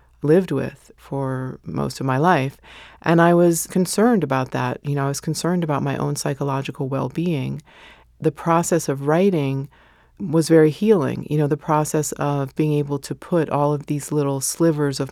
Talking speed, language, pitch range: 180 wpm, English, 135-160 Hz